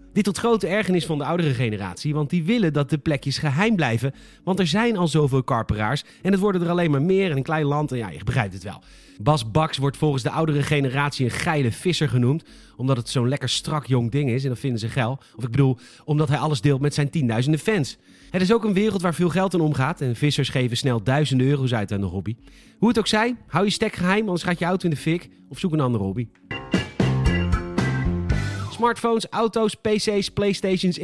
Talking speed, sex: 230 wpm, male